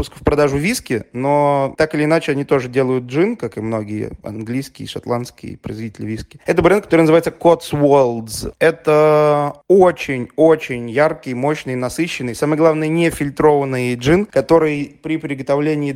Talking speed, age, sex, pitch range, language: 130 wpm, 20-39, male, 135-160 Hz, Russian